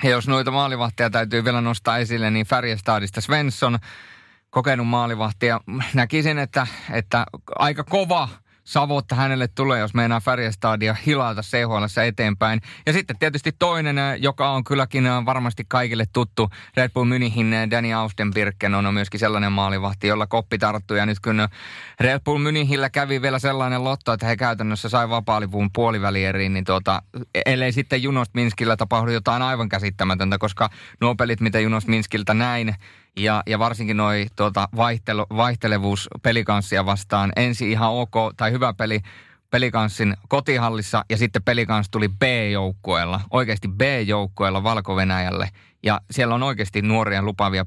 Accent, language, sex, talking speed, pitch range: native, Finnish, male, 145 wpm, 105-125 Hz